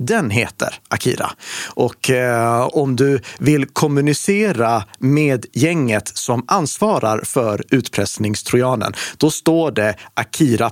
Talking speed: 100 wpm